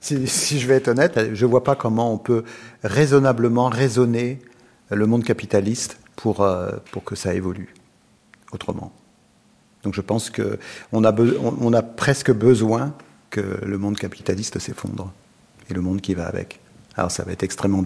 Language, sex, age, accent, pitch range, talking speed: French, male, 50-69, French, 100-130 Hz, 175 wpm